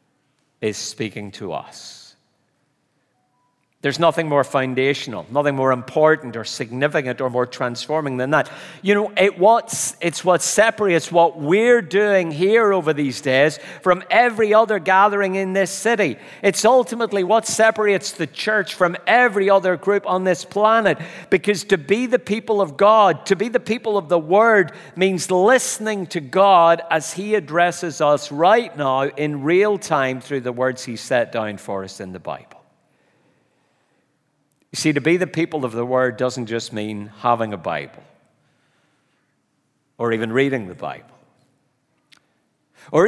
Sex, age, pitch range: male, 50-69, 130-195 Hz